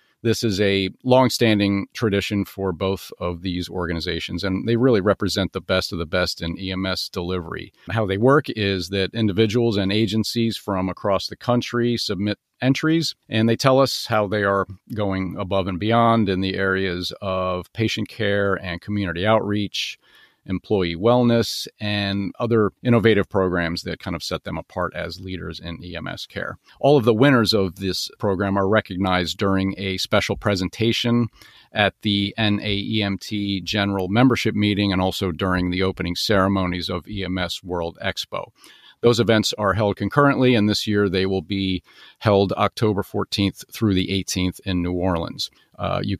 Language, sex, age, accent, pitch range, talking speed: English, male, 40-59, American, 95-115 Hz, 160 wpm